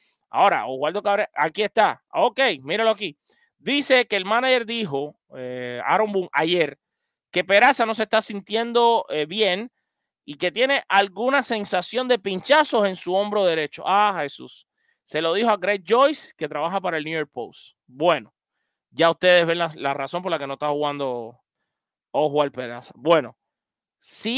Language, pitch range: English, 165-235 Hz